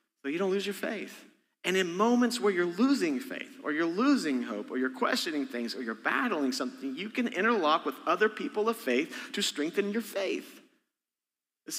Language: English